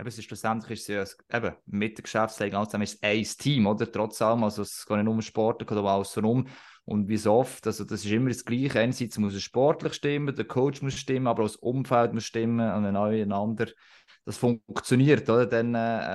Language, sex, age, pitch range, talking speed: German, male, 20-39, 110-130 Hz, 210 wpm